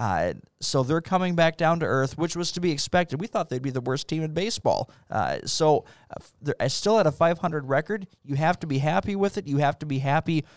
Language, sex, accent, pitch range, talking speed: English, male, American, 130-160 Hz, 245 wpm